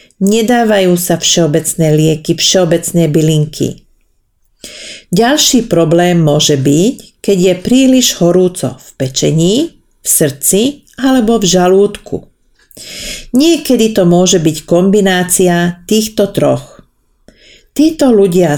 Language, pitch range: Slovak, 155-210 Hz